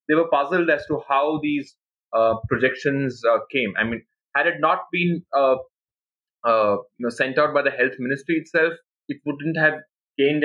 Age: 20-39